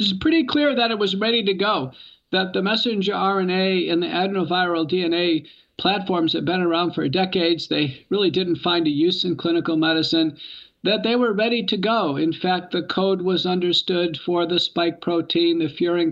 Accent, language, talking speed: American, English, 185 wpm